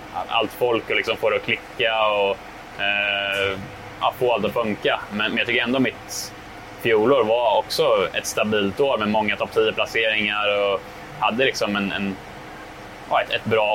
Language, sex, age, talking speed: Swedish, male, 20-39, 175 wpm